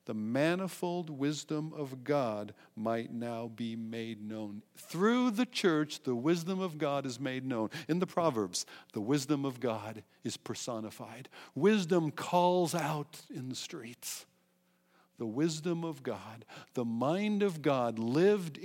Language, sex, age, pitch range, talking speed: English, male, 60-79, 115-180 Hz, 140 wpm